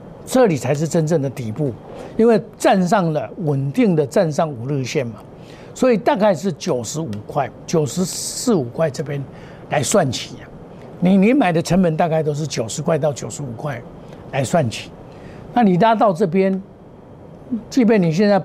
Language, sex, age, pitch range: Chinese, male, 60-79, 145-210 Hz